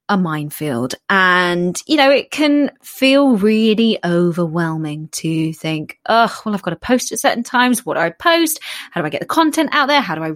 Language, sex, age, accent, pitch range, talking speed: English, female, 20-39, British, 165-250 Hz, 210 wpm